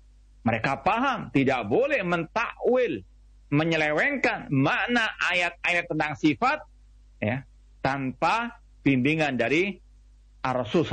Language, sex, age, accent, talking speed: Indonesian, male, 50-69, native, 80 wpm